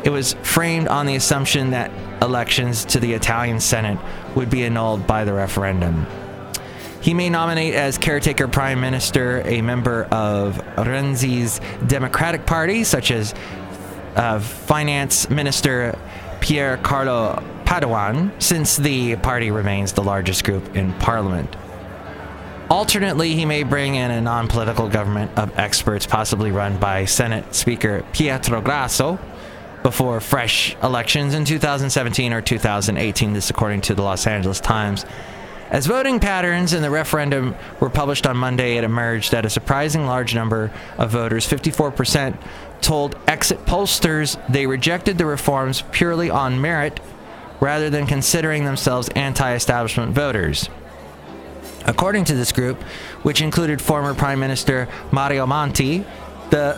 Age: 20-39